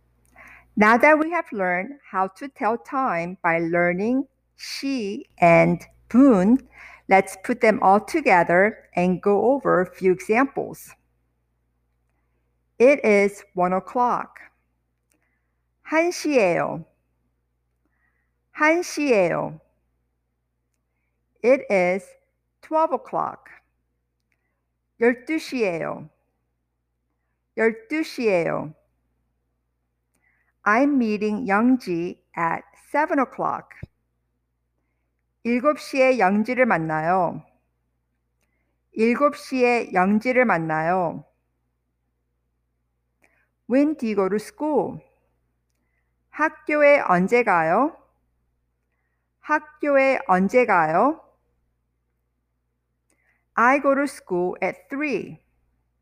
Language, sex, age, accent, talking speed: English, female, 50-69, American, 75 wpm